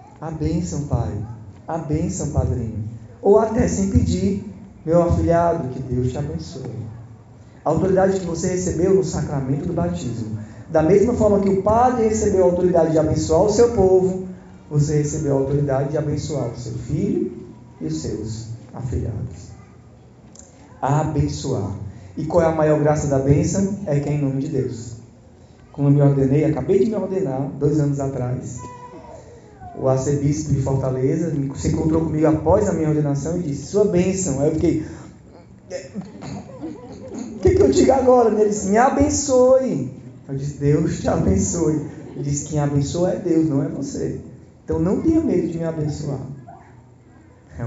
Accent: Brazilian